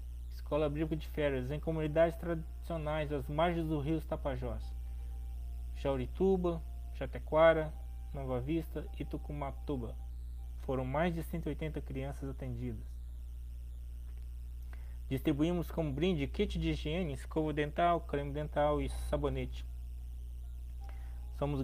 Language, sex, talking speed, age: Portuguese, male, 105 wpm, 20-39